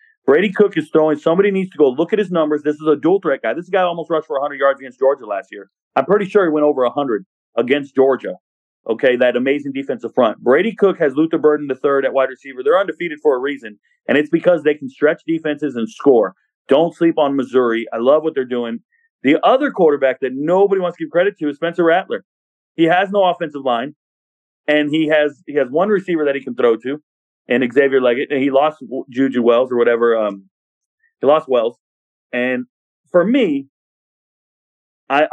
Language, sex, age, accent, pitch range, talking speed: English, male, 30-49, American, 125-165 Hz, 210 wpm